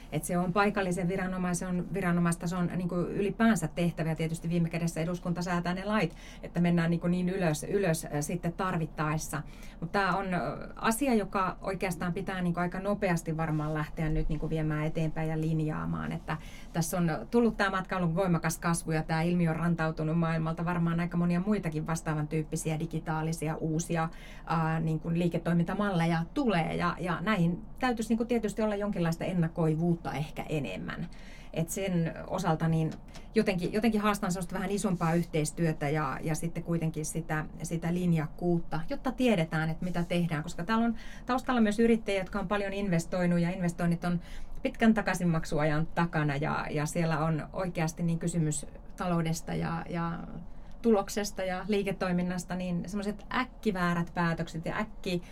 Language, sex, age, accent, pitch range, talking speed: Finnish, female, 30-49, native, 160-190 Hz, 150 wpm